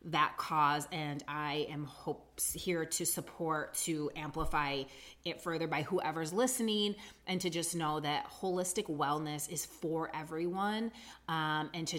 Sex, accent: female, American